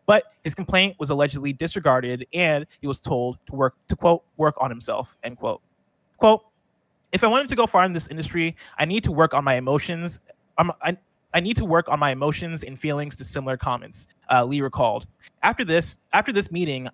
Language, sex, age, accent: English, male, 20-39, American